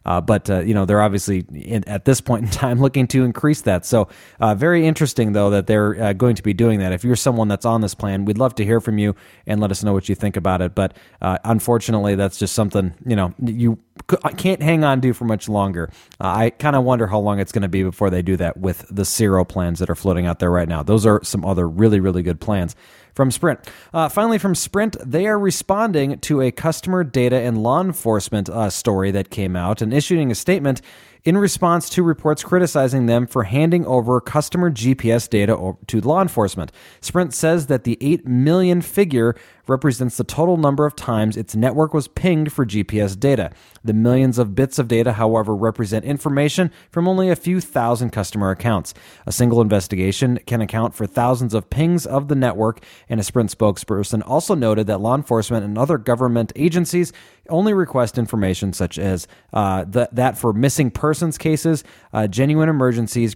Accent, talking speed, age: American, 205 wpm, 30-49